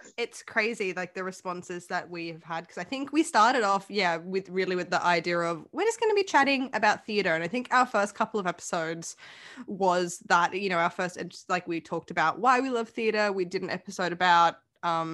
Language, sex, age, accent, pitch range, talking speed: English, female, 10-29, Australian, 180-255 Hz, 225 wpm